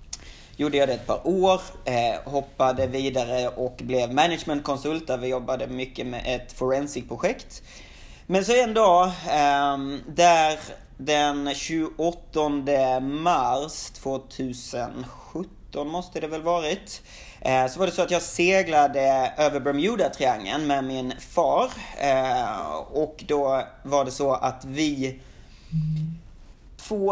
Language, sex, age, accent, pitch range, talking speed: Swedish, male, 30-49, native, 135-165 Hz, 115 wpm